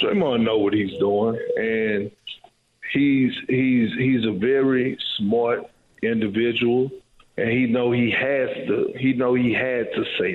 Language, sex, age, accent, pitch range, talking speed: English, male, 50-69, American, 115-155 Hz, 145 wpm